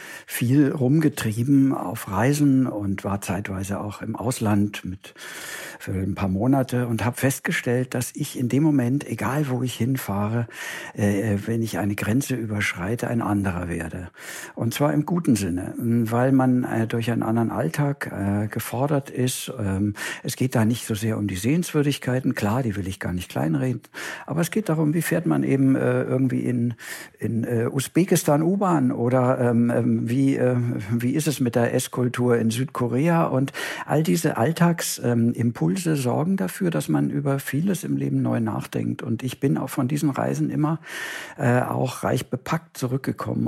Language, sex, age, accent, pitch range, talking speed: English, male, 60-79, German, 110-140 Hz, 170 wpm